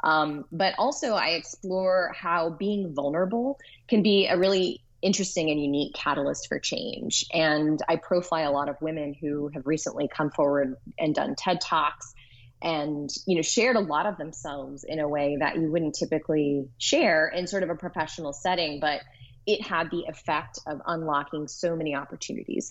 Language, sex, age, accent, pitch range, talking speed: English, female, 20-39, American, 145-175 Hz, 175 wpm